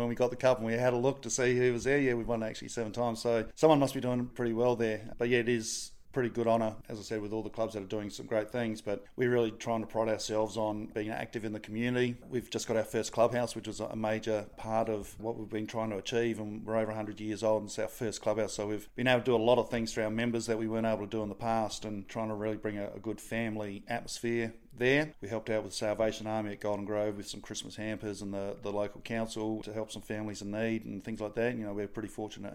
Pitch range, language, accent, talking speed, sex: 105-115 Hz, English, Australian, 290 wpm, male